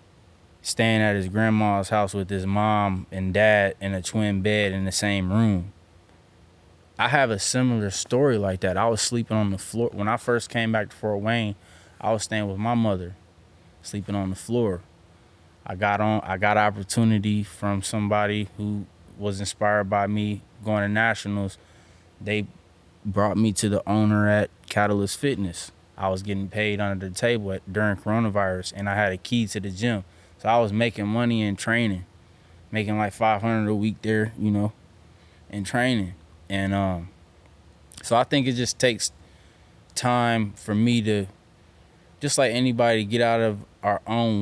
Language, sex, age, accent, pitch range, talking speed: English, male, 20-39, American, 90-110 Hz, 175 wpm